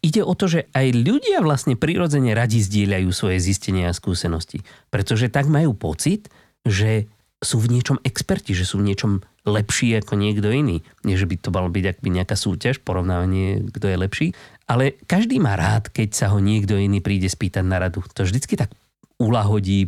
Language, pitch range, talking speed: Slovak, 100-135 Hz, 185 wpm